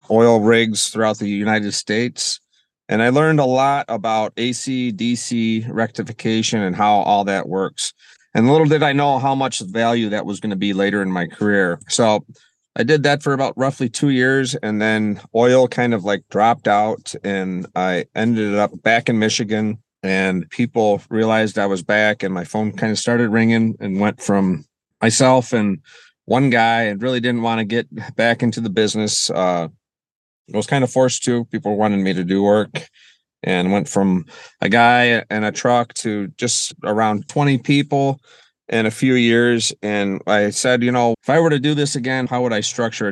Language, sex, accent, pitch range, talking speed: English, male, American, 100-120 Hz, 190 wpm